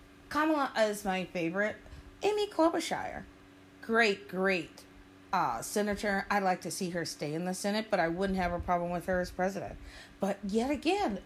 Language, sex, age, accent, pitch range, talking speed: English, female, 40-59, American, 190-275 Hz, 170 wpm